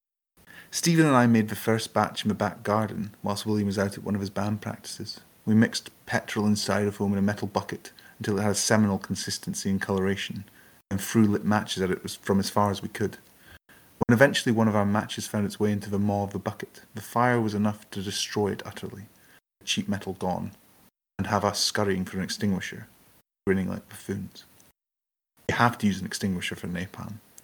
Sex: male